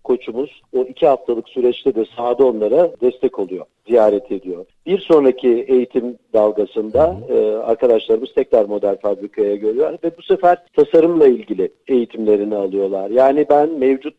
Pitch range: 120-170 Hz